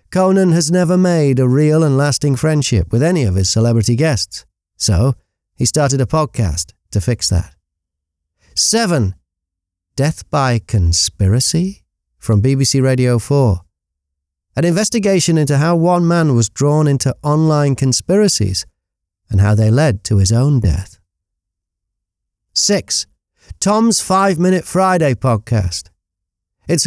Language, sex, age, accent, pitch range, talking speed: English, male, 40-59, British, 100-160 Hz, 125 wpm